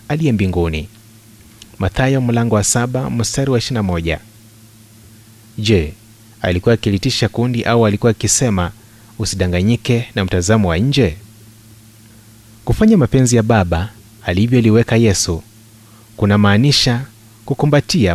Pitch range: 105-120 Hz